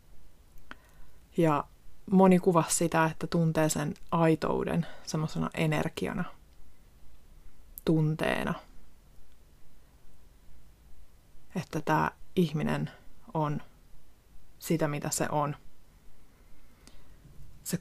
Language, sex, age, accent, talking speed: Finnish, female, 30-49, native, 65 wpm